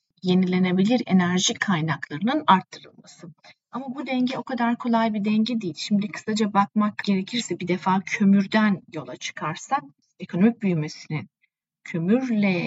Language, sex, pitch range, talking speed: Turkish, female, 175-210 Hz, 120 wpm